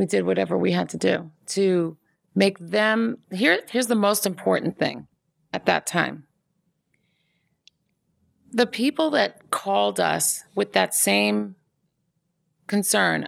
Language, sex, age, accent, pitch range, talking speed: English, female, 40-59, American, 155-220 Hz, 120 wpm